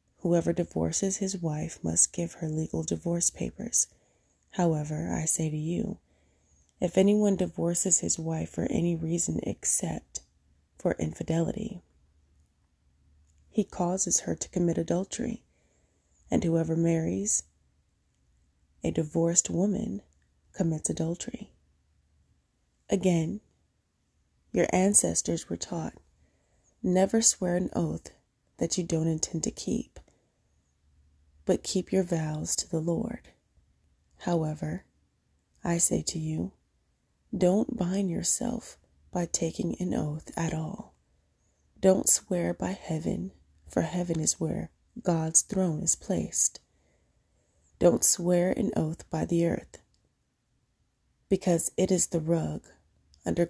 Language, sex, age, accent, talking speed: English, female, 30-49, American, 115 wpm